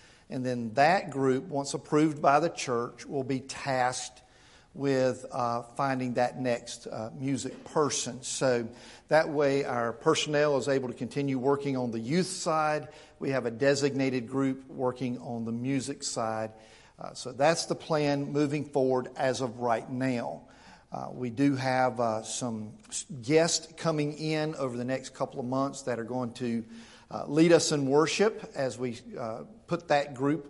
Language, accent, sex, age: English, American, male, 50-69